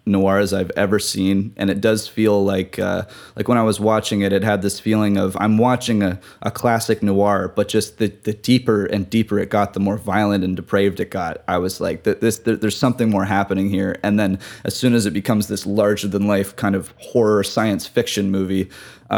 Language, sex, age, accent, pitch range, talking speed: English, male, 20-39, American, 100-110 Hz, 225 wpm